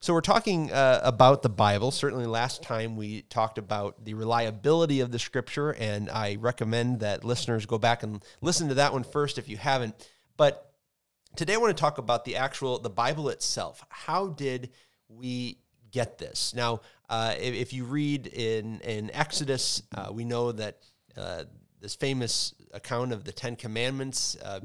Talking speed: 175 wpm